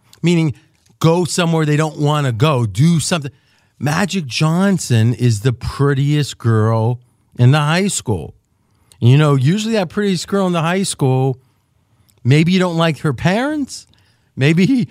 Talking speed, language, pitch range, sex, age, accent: 155 wpm, English, 120-185 Hz, male, 40-59, American